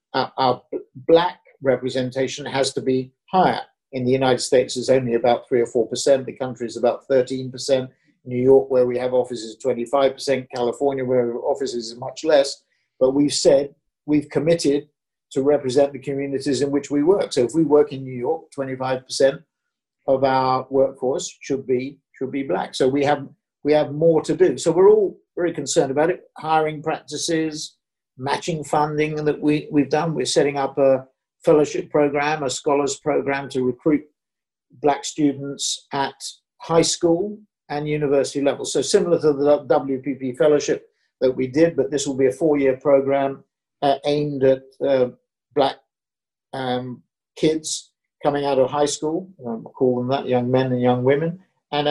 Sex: male